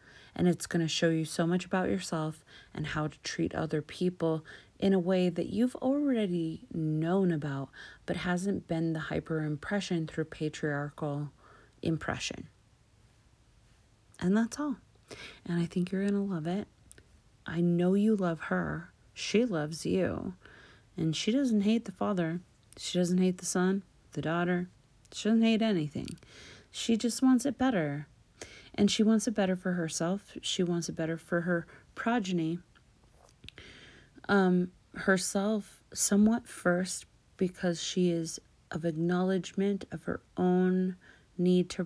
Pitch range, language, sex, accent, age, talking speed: 155-185 Hz, English, female, American, 30-49, 145 wpm